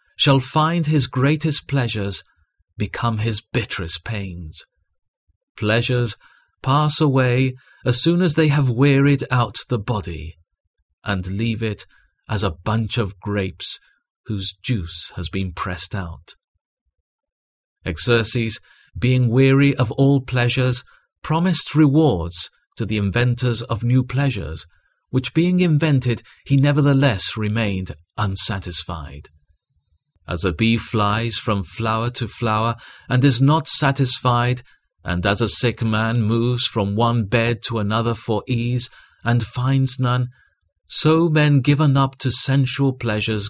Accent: British